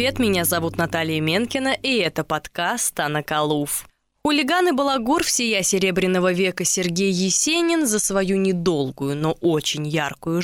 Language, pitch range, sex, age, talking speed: Russian, 160-240 Hz, female, 20-39, 130 wpm